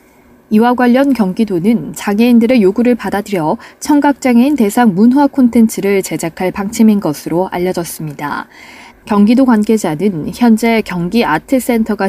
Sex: female